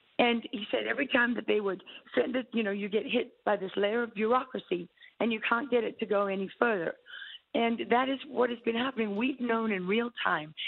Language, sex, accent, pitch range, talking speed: English, female, American, 190-235 Hz, 230 wpm